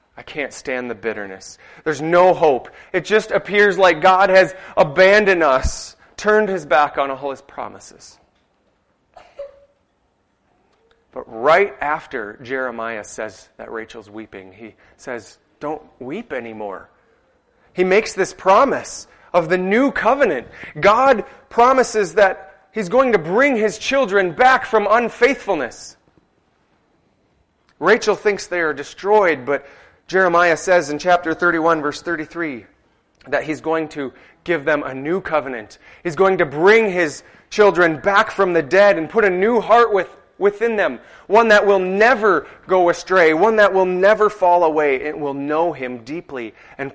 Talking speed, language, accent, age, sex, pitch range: 145 wpm, English, American, 30-49, male, 145-200 Hz